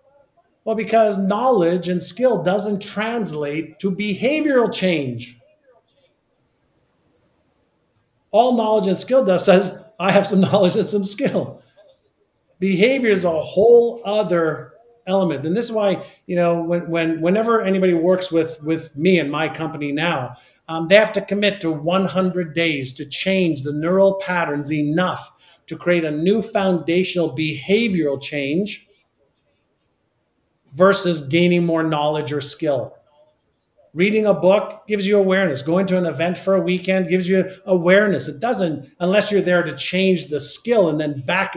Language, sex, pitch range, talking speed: English, male, 160-205 Hz, 145 wpm